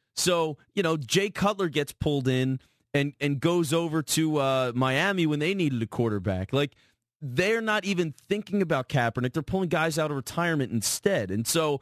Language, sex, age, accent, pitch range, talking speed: English, male, 30-49, American, 130-175 Hz, 185 wpm